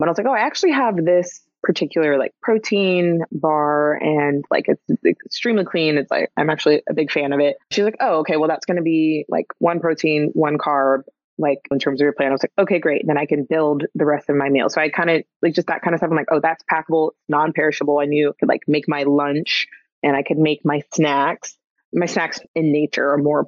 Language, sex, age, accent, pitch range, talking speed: English, female, 20-39, American, 145-170 Hz, 250 wpm